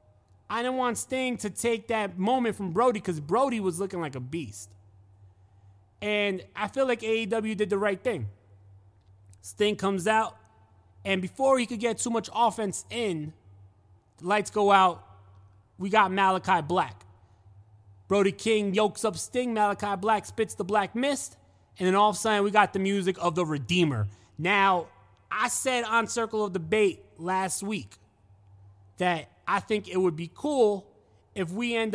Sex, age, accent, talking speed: male, 20-39, American, 165 wpm